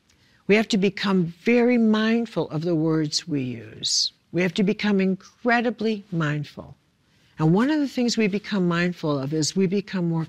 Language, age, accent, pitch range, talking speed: English, 60-79, American, 160-210 Hz, 175 wpm